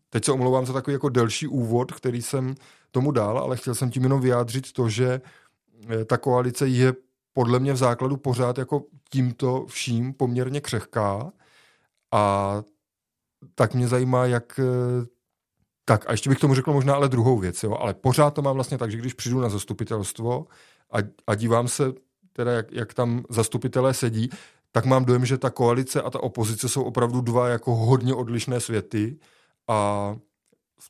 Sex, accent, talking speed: male, native, 170 wpm